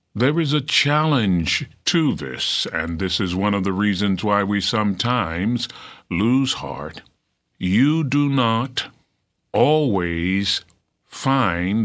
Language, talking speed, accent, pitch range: English, 115 wpm, American, 90-115 Hz